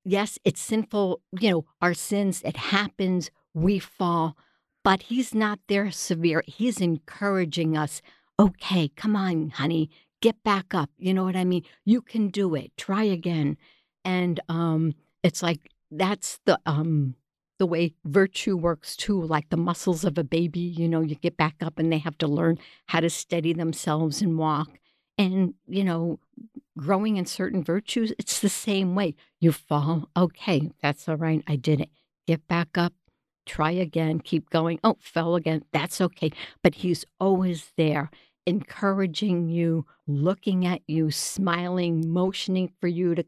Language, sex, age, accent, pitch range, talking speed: English, female, 60-79, American, 160-190 Hz, 165 wpm